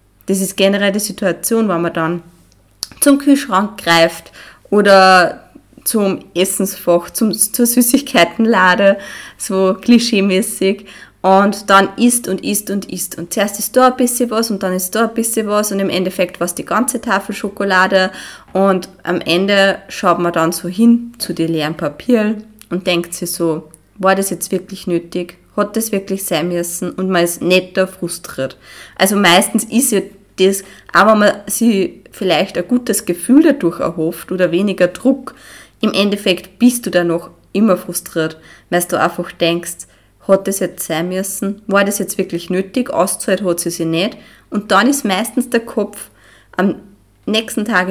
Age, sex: 20-39, female